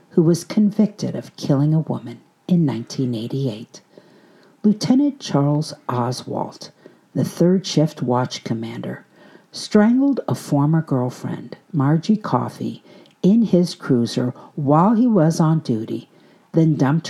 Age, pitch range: 50-69, 145-205 Hz